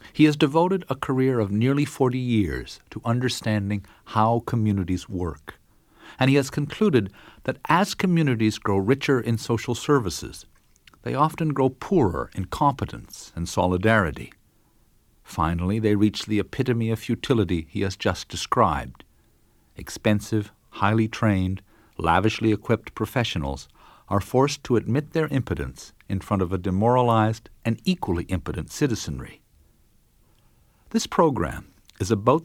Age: 50-69